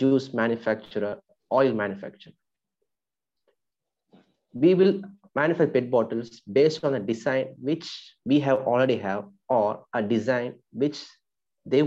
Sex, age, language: male, 30-49, English